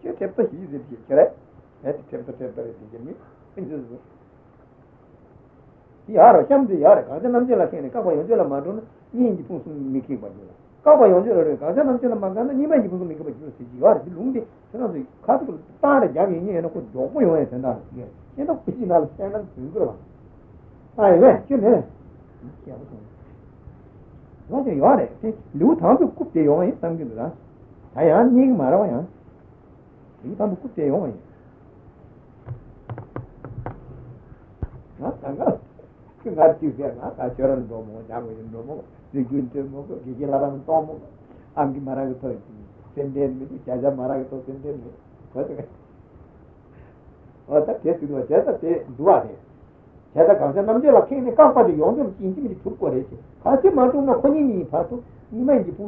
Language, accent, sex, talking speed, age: Italian, Indian, male, 80 wpm, 60-79